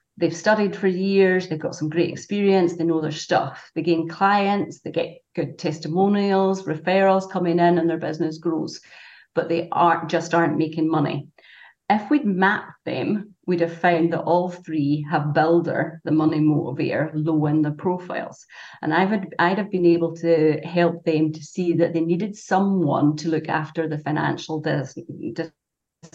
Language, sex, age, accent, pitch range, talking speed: English, female, 40-59, British, 155-170 Hz, 170 wpm